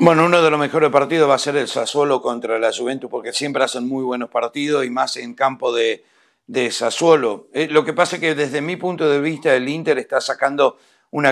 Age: 60-79